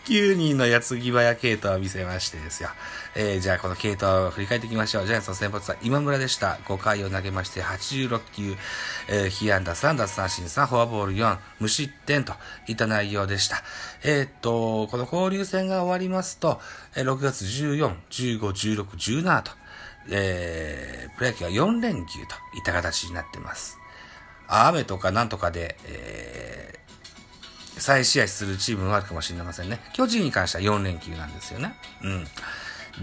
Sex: male